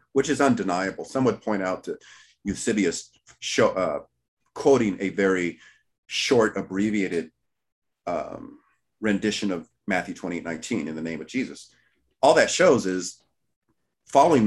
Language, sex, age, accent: English, male, 40-59, American